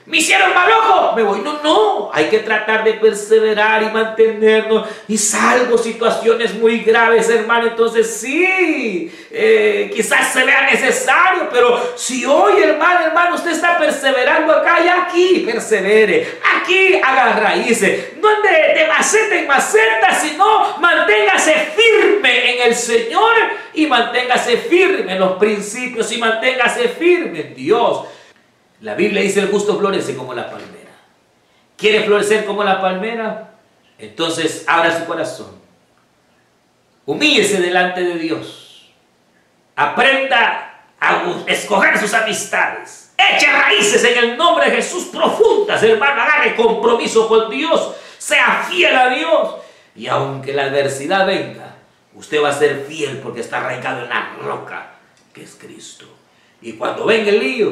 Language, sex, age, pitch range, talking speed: Spanish, male, 40-59, 210-340 Hz, 140 wpm